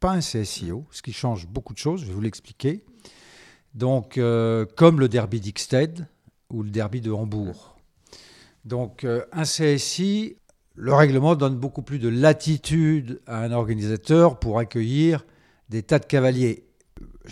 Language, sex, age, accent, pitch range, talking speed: French, male, 50-69, French, 110-150 Hz, 155 wpm